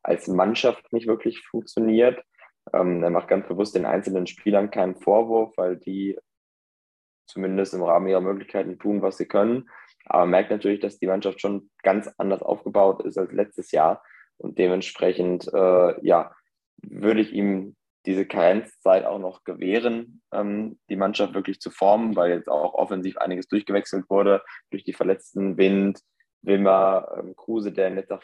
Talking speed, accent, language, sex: 160 wpm, German, German, male